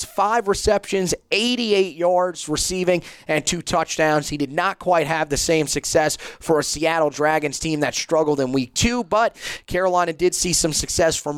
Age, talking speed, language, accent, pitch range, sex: 30-49, 175 wpm, English, American, 150-180 Hz, male